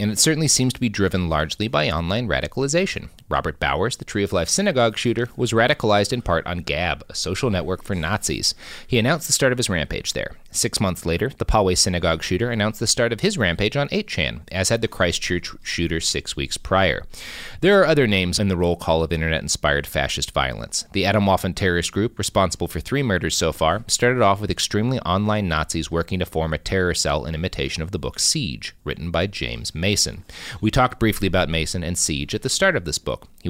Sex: male